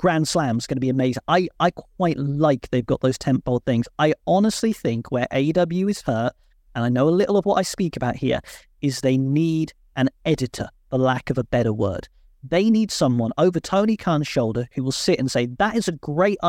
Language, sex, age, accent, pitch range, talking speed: English, male, 30-49, British, 130-180 Hz, 225 wpm